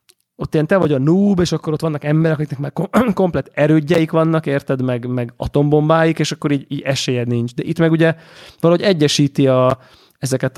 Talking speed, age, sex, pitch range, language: 195 wpm, 20-39, male, 130-155 Hz, Hungarian